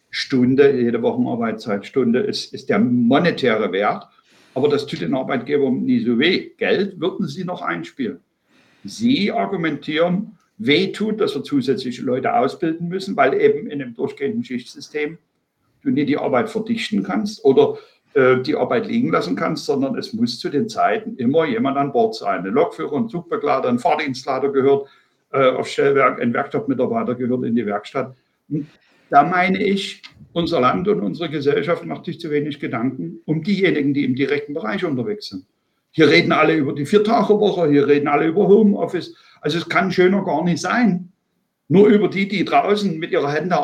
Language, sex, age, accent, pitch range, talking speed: German, male, 60-79, German, 150-230 Hz, 170 wpm